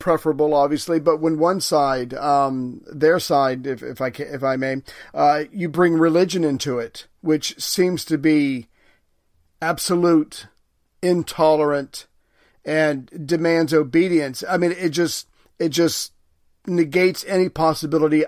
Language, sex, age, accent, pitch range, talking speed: English, male, 40-59, American, 145-170 Hz, 130 wpm